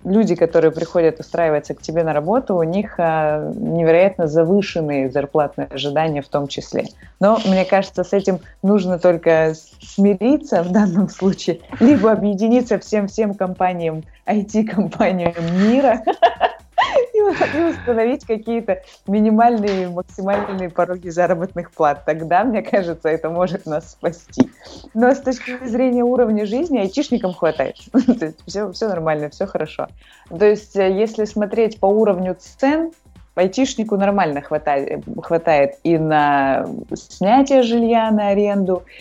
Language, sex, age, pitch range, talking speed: Russian, female, 20-39, 155-210 Hz, 125 wpm